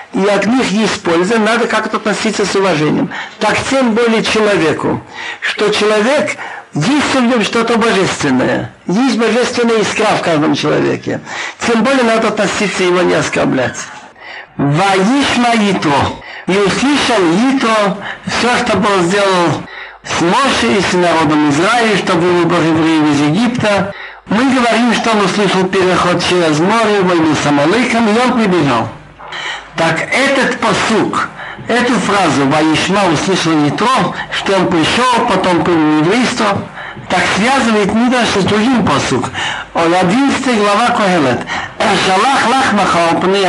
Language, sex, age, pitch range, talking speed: Russian, male, 60-79, 180-235 Hz, 130 wpm